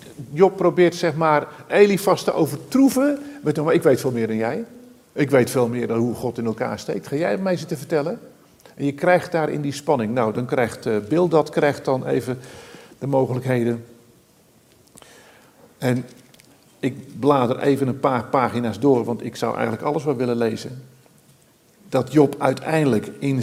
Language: Dutch